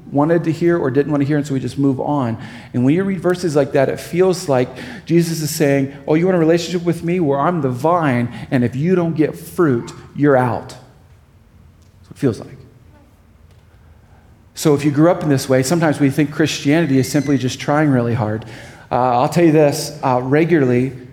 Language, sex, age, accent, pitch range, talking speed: English, male, 40-59, American, 120-155 Hz, 215 wpm